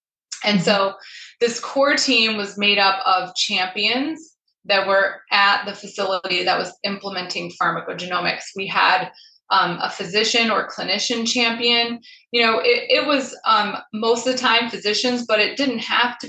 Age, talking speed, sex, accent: 20-39, 160 wpm, female, American